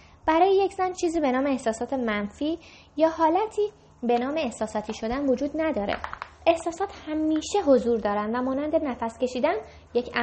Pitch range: 230-315 Hz